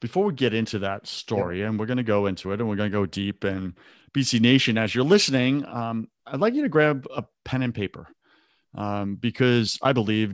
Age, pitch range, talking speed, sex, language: 30-49, 105-130 Hz, 225 wpm, male, English